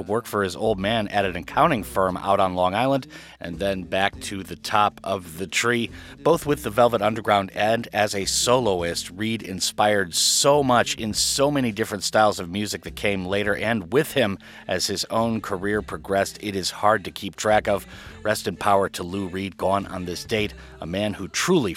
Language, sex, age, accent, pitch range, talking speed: English, male, 30-49, American, 95-115 Hz, 205 wpm